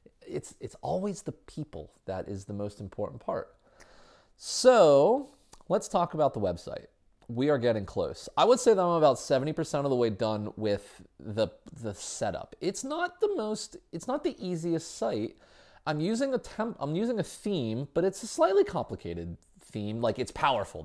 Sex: male